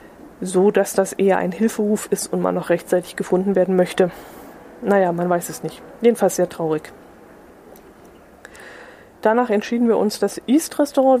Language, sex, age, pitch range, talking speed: German, female, 20-39, 180-205 Hz, 155 wpm